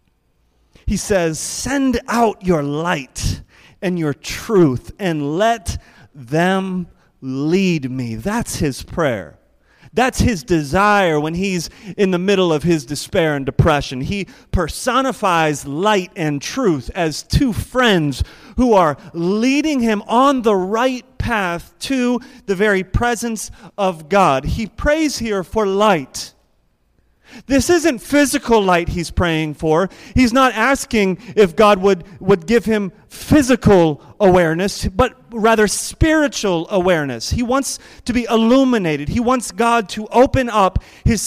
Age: 30-49